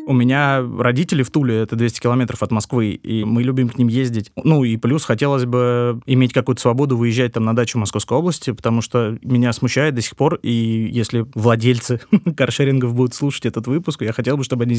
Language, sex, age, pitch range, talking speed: Russian, male, 20-39, 115-140 Hz, 205 wpm